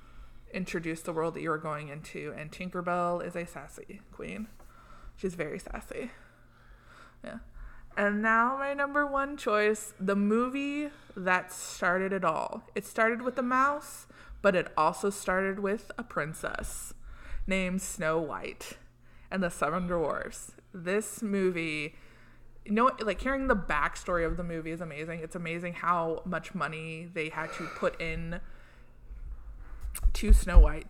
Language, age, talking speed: English, 20-39, 145 wpm